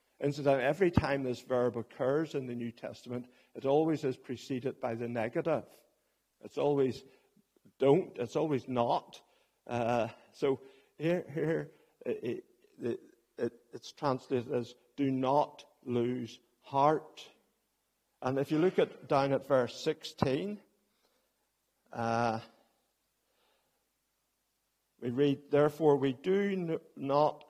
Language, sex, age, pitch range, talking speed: English, male, 60-79, 130-180 Hz, 120 wpm